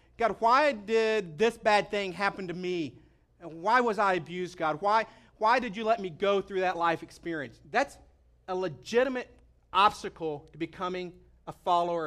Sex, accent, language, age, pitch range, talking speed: male, American, English, 40-59, 170-215 Hz, 170 wpm